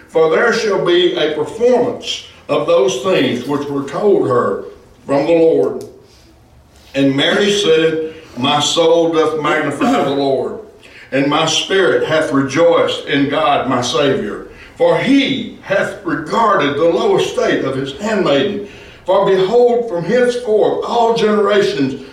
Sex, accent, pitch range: male, American, 175-250 Hz